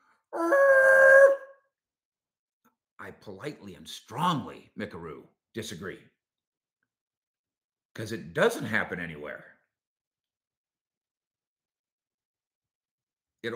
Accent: American